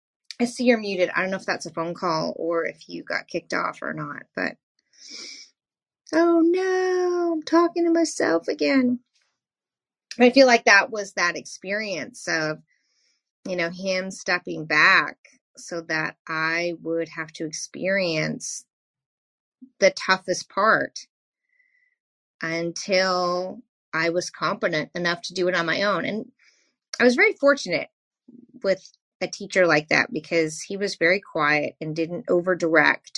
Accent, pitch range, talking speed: American, 170-240 Hz, 145 wpm